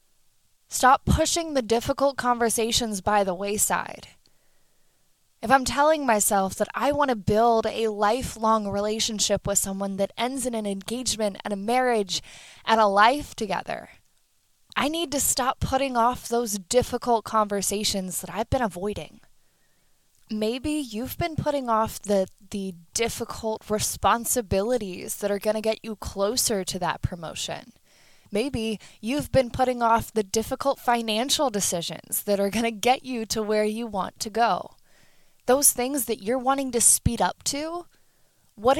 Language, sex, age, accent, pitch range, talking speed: English, female, 10-29, American, 205-260 Hz, 150 wpm